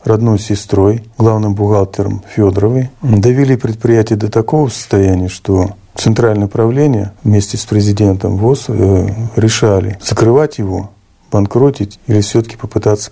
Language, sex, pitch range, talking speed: Russian, male, 100-115 Hz, 110 wpm